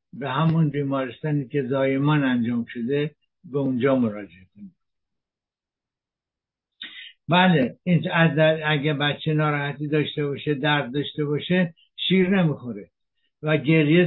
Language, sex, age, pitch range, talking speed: English, male, 60-79, 145-175 Hz, 100 wpm